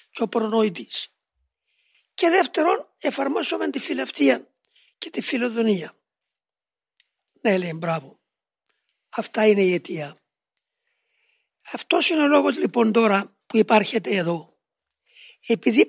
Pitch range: 220-320 Hz